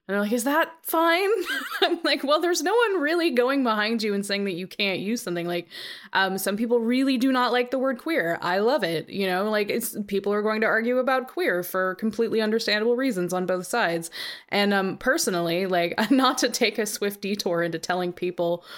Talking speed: 215 wpm